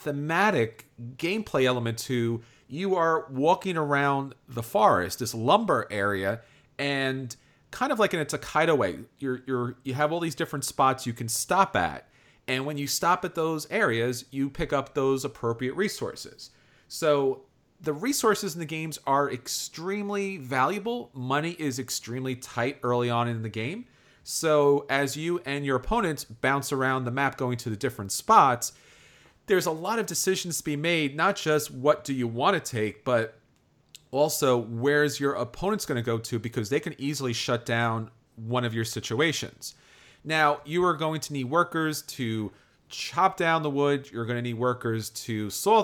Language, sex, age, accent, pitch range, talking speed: English, male, 40-59, American, 120-160 Hz, 175 wpm